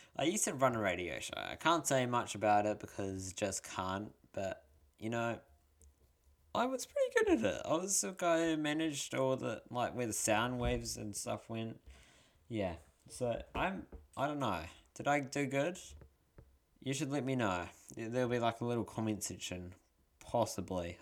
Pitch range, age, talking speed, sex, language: 95-130 Hz, 20-39, 185 wpm, male, English